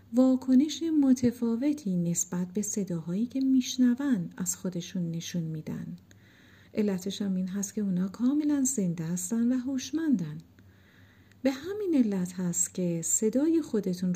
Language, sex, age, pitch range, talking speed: Persian, female, 50-69, 175-245 Hz, 125 wpm